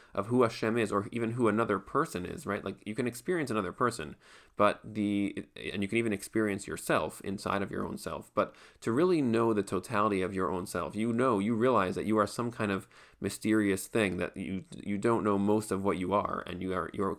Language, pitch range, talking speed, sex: English, 95-110 Hz, 235 wpm, male